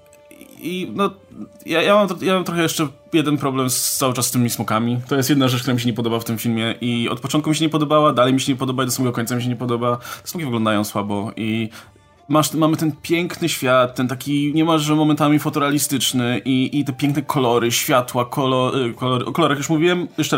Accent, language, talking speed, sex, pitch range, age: native, Polish, 220 wpm, male, 120-150 Hz, 20-39